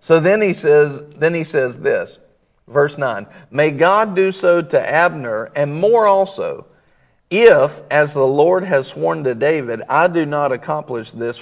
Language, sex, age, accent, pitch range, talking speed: English, male, 50-69, American, 140-185 Hz, 170 wpm